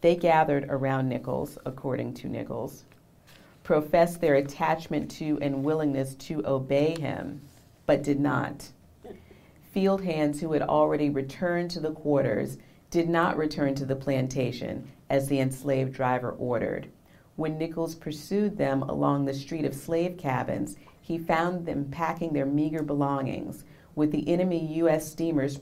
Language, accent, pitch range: English, American, 135-155 Hz